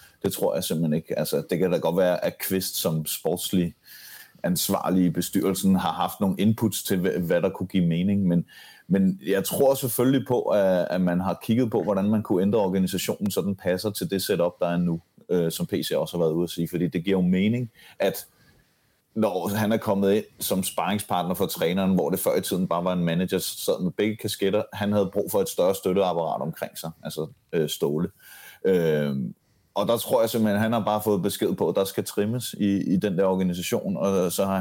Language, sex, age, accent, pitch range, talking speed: Danish, male, 30-49, native, 90-110 Hz, 220 wpm